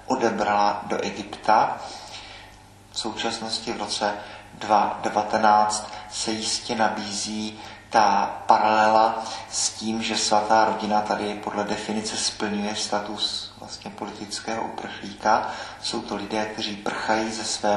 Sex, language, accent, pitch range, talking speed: male, Czech, native, 105-115 Hz, 110 wpm